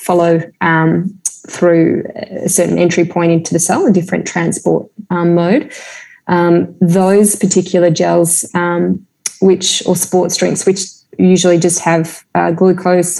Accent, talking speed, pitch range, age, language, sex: Australian, 135 wpm, 170-185 Hz, 20-39, English, female